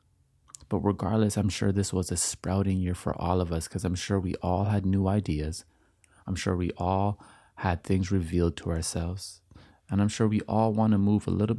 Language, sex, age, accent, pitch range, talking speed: English, male, 30-49, American, 90-110 Hz, 205 wpm